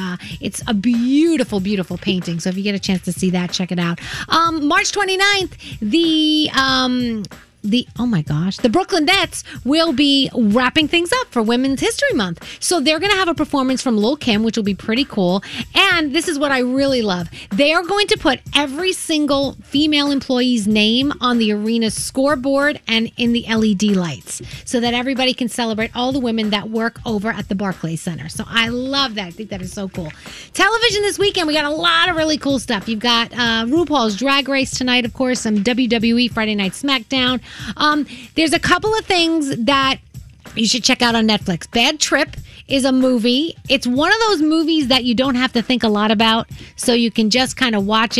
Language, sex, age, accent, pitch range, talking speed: English, female, 30-49, American, 215-285 Hz, 210 wpm